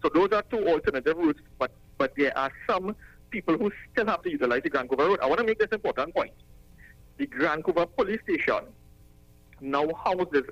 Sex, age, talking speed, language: male, 60-79, 190 wpm, English